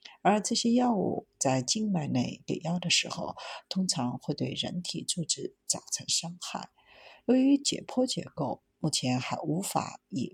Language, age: Chinese, 50-69